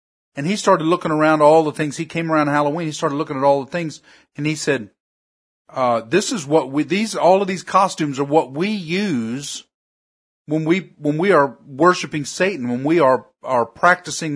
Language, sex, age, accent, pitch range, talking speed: English, male, 50-69, American, 150-185 Hz, 205 wpm